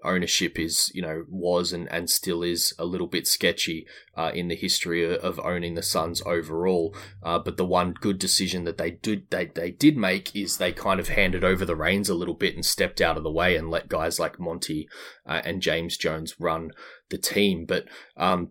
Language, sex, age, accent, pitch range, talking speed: English, male, 20-39, Australian, 85-95 Hz, 215 wpm